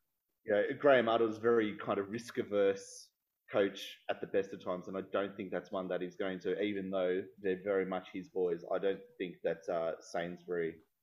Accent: Australian